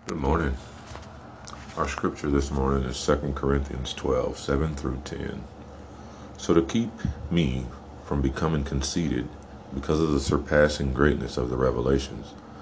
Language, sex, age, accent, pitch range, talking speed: English, male, 40-59, American, 70-80 Hz, 135 wpm